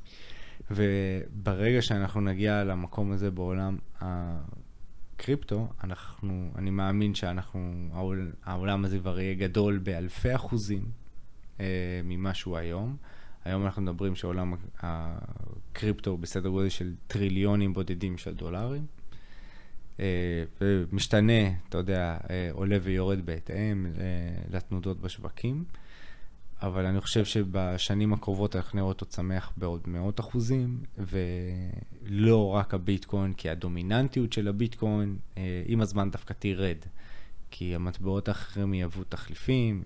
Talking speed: 105 wpm